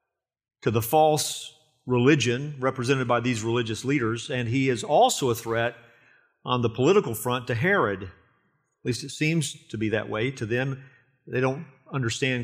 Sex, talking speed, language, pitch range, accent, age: male, 165 wpm, English, 120-155 Hz, American, 40-59